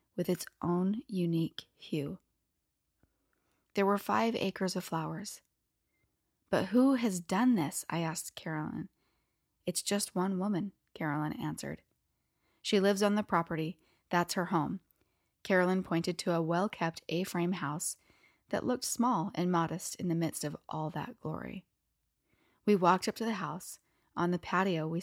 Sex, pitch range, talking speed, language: female, 165-205 Hz, 150 wpm, English